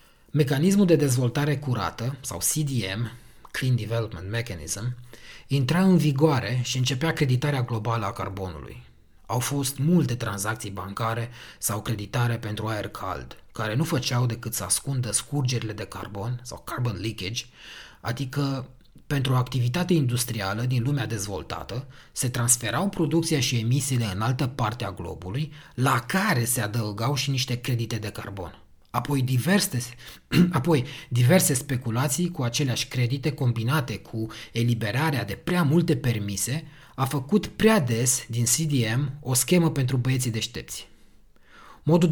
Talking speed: 135 wpm